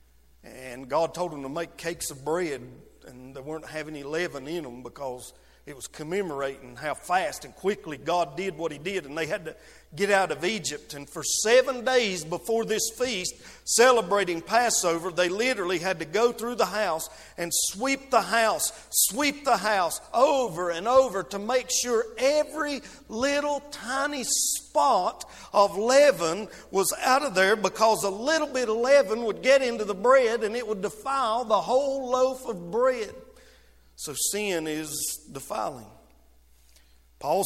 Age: 50-69